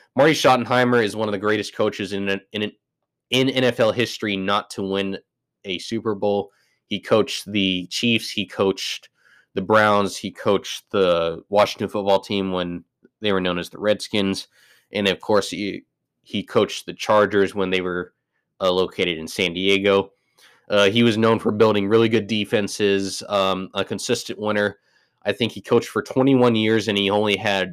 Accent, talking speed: American, 175 wpm